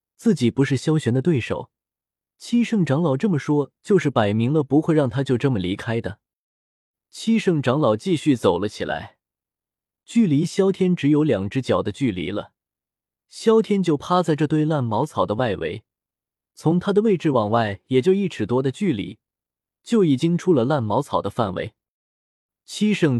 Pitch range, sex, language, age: 115-170 Hz, male, Chinese, 20-39